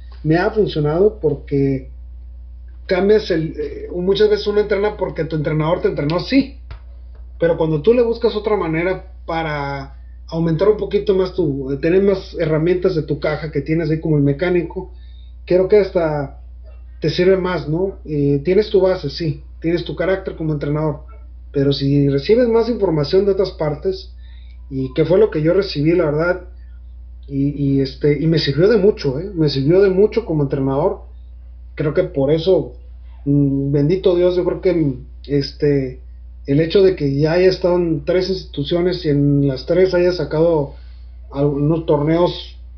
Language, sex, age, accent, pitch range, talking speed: Spanish, male, 30-49, Mexican, 135-185 Hz, 165 wpm